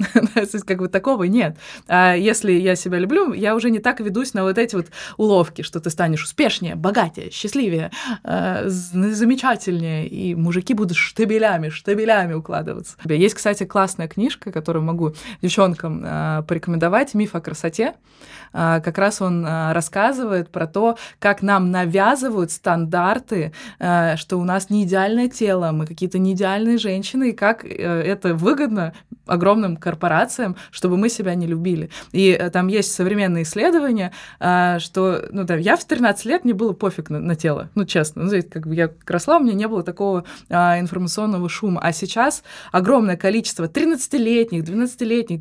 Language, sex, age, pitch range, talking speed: Russian, female, 20-39, 175-220 Hz, 155 wpm